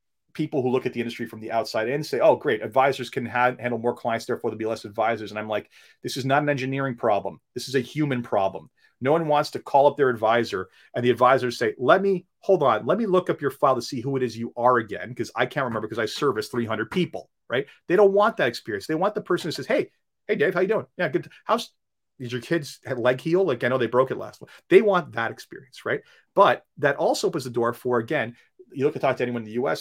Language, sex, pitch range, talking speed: English, male, 125-170 Hz, 270 wpm